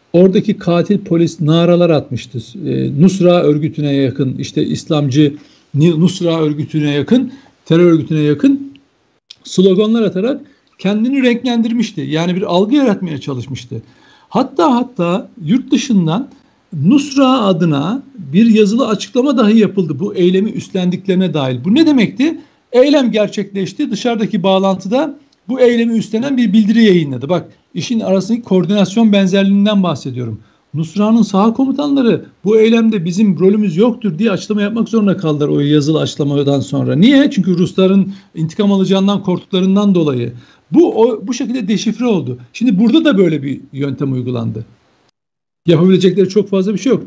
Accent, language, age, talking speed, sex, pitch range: native, Turkish, 60-79, 130 wpm, male, 160-230 Hz